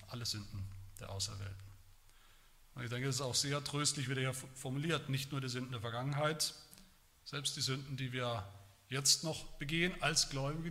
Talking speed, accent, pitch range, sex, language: 180 wpm, German, 115-160 Hz, male, German